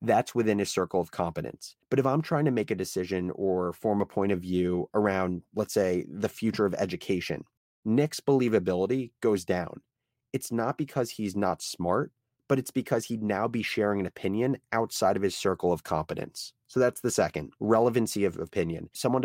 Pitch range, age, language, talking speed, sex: 95-130 Hz, 30-49, English, 185 wpm, male